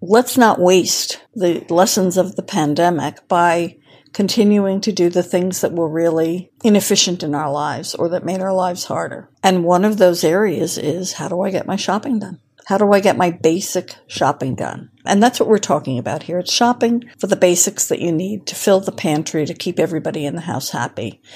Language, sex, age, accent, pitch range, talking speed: English, female, 60-79, American, 170-205 Hz, 210 wpm